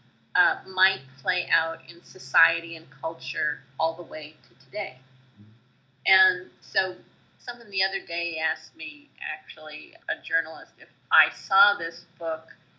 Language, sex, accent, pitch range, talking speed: English, female, American, 150-185 Hz, 135 wpm